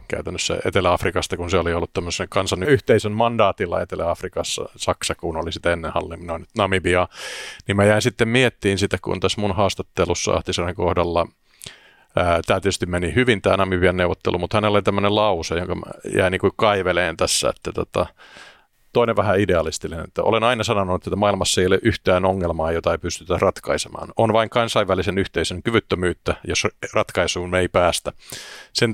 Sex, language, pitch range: male, Finnish, 90-105 Hz